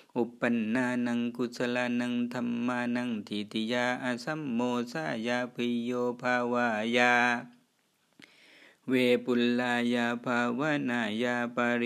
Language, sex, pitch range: Thai, male, 110-125 Hz